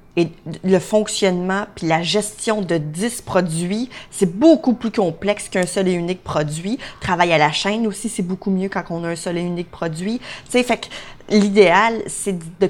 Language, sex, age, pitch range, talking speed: French, female, 30-49, 160-195 Hz, 190 wpm